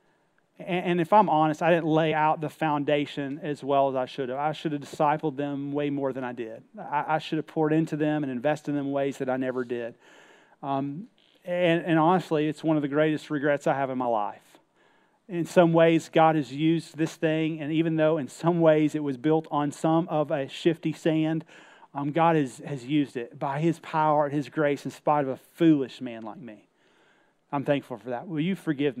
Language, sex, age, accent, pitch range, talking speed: English, male, 30-49, American, 145-170 Hz, 220 wpm